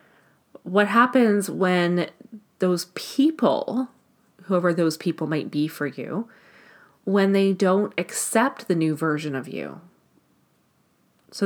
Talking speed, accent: 115 wpm, American